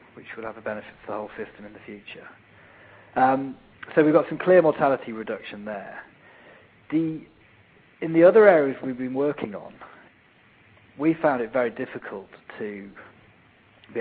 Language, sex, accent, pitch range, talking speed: English, male, British, 105-125 Hz, 155 wpm